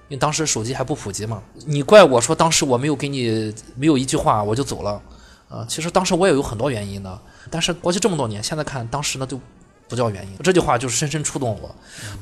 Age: 20-39